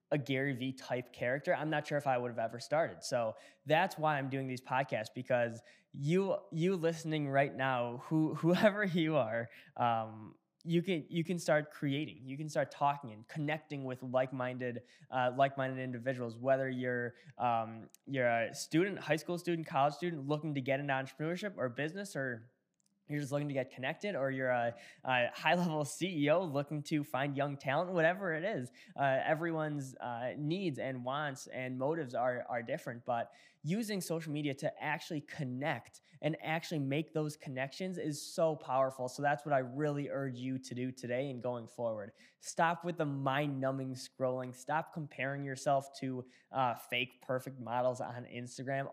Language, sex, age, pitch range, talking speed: English, male, 10-29, 130-155 Hz, 175 wpm